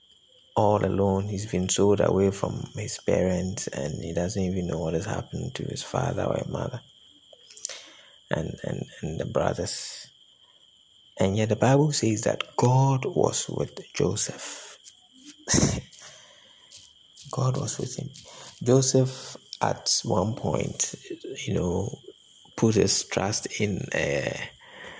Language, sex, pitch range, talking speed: English, male, 100-140 Hz, 125 wpm